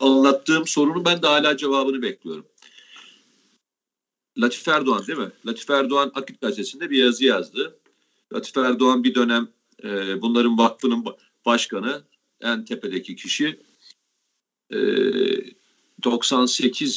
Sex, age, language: male, 40-59, Turkish